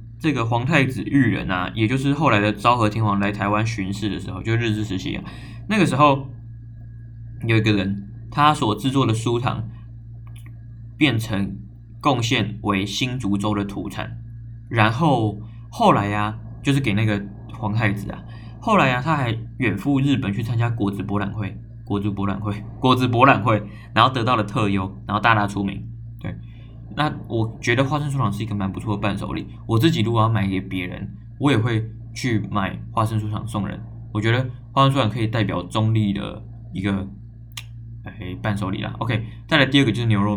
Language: Chinese